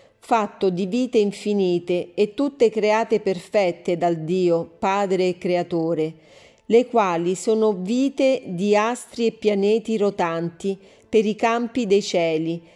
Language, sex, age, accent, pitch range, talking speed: Italian, female, 40-59, native, 175-225 Hz, 125 wpm